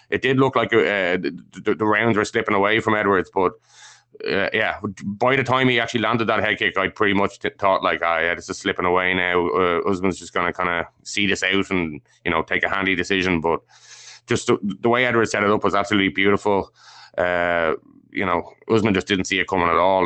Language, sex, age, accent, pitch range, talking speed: English, male, 20-39, Irish, 95-110 Hz, 230 wpm